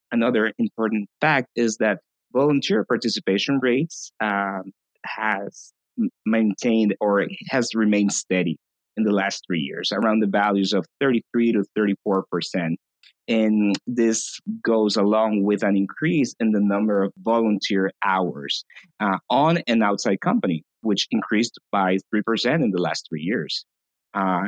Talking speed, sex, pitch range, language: 135 wpm, male, 100-115 Hz, English